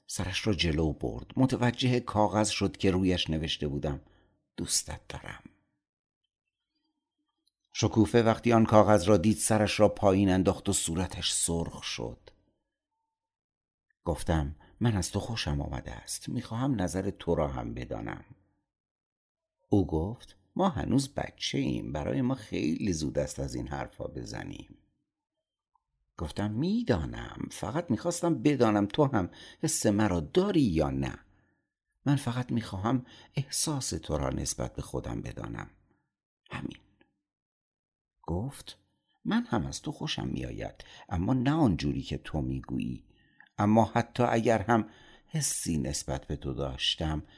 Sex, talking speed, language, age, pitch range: male, 125 wpm, Persian, 60-79, 80-125 Hz